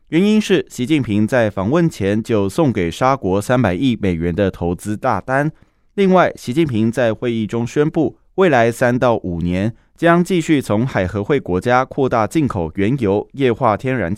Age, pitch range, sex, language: 20-39, 100-145 Hz, male, Chinese